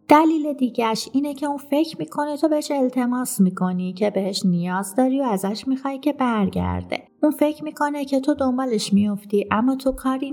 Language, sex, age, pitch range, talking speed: Persian, female, 30-49, 195-275 Hz, 175 wpm